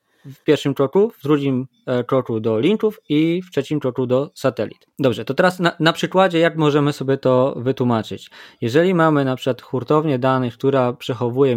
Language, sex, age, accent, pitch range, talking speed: Polish, male, 20-39, native, 125-160 Hz, 170 wpm